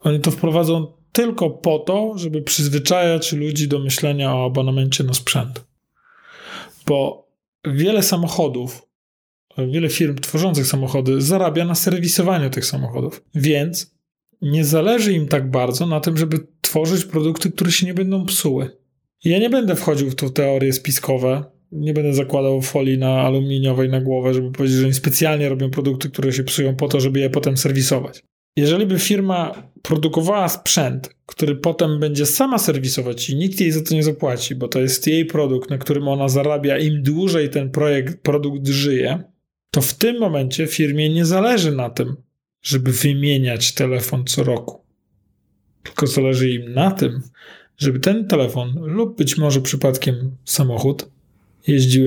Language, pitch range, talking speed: Polish, 130-165 Hz, 155 wpm